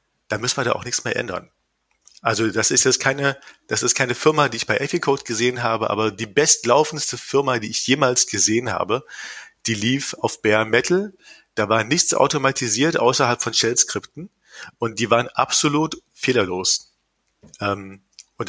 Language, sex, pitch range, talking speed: German, male, 110-150 Hz, 165 wpm